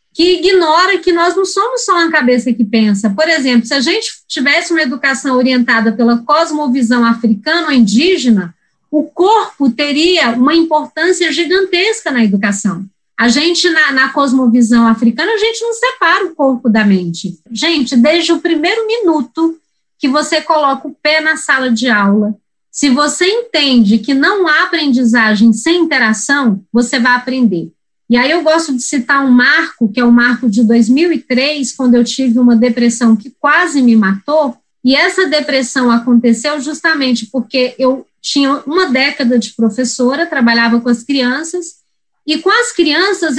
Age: 20-39